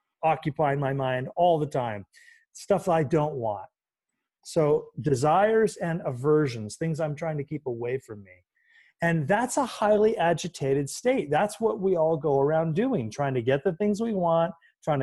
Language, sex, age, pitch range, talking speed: English, male, 30-49, 140-180 Hz, 170 wpm